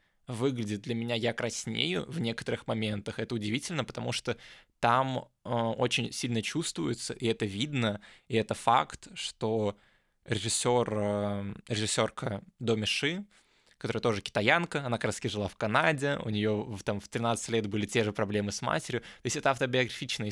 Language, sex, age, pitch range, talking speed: Russian, male, 20-39, 110-130 Hz, 155 wpm